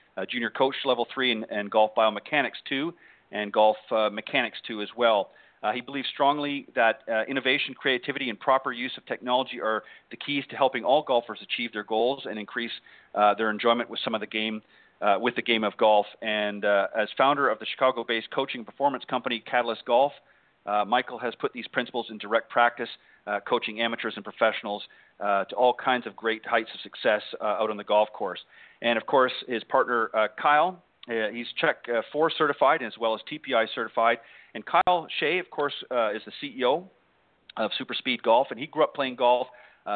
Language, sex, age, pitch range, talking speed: English, male, 40-59, 110-130 Hz, 205 wpm